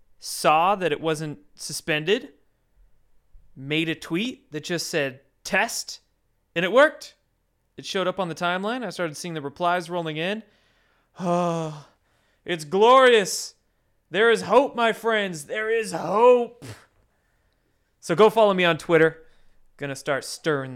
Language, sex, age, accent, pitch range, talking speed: English, male, 20-39, American, 130-185 Hz, 140 wpm